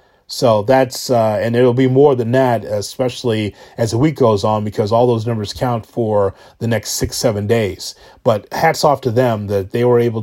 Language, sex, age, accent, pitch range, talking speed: English, male, 30-49, American, 110-130 Hz, 205 wpm